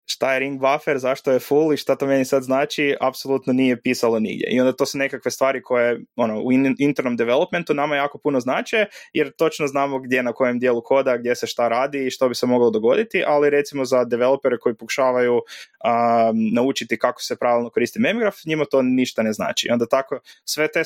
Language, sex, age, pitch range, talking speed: Croatian, male, 20-39, 115-130 Hz, 205 wpm